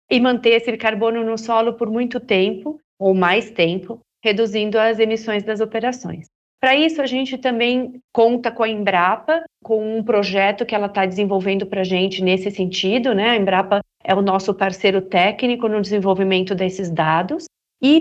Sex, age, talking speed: female, 40-59, 170 wpm